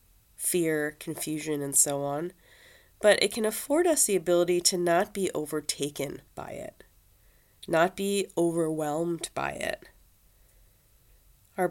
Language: English